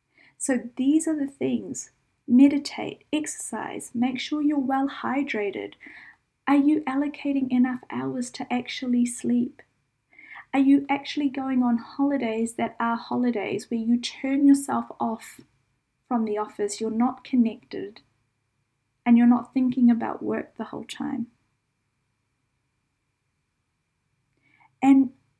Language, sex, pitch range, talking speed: English, female, 205-275 Hz, 120 wpm